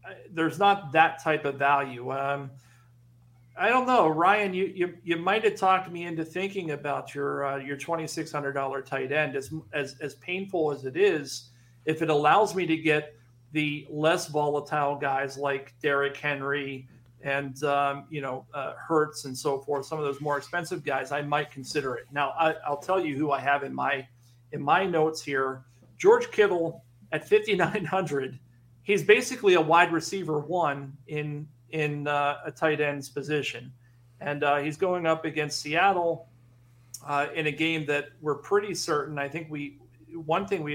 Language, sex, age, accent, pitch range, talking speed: English, male, 40-59, American, 135-165 Hz, 180 wpm